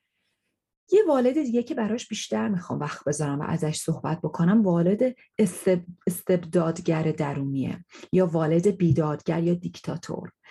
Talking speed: 125 wpm